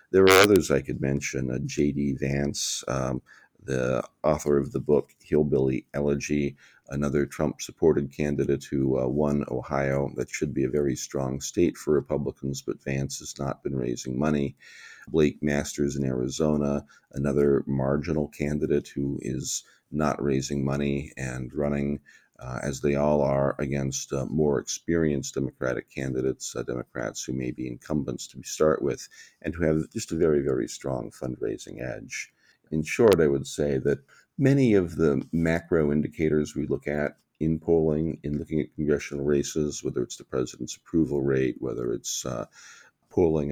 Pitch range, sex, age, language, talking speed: 70-75 Hz, male, 50-69, English, 160 wpm